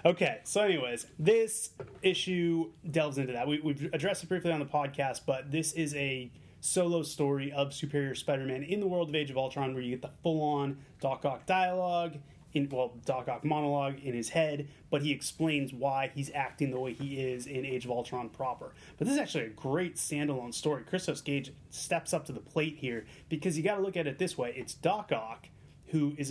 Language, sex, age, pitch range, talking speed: English, male, 30-49, 140-170 Hz, 210 wpm